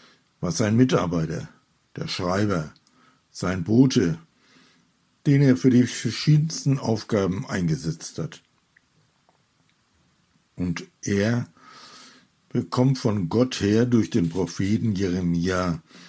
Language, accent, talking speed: German, German, 95 wpm